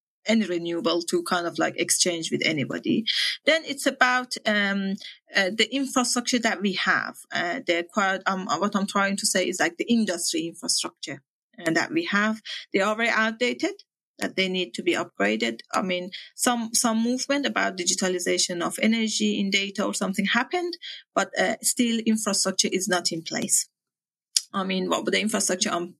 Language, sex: English, female